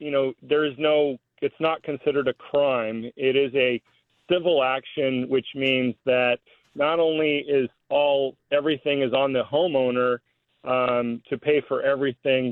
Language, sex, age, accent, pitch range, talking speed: English, male, 40-59, American, 130-160 Hz, 155 wpm